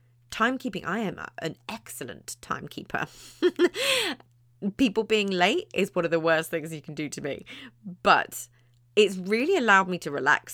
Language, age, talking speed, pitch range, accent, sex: English, 30-49, 155 wpm, 125-205 Hz, British, female